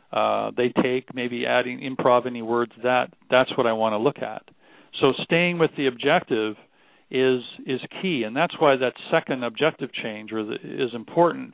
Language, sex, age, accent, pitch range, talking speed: English, male, 50-69, American, 125-150 Hz, 170 wpm